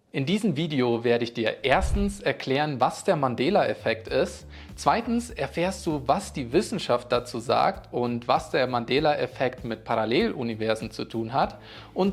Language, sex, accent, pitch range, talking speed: German, male, German, 120-165 Hz, 150 wpm